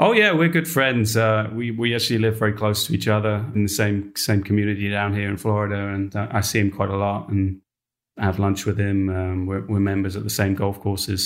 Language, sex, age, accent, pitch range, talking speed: English, male, 30-49, British, 100-110 Hz, 245 wpm